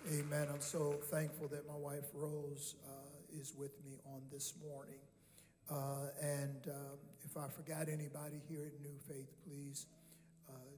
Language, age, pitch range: English, 50-69, 145-160 Hz